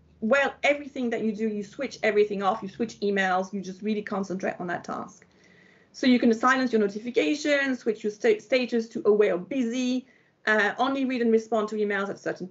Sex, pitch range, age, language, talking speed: female, 215-260 Hz, 40-59, English, 200 wpm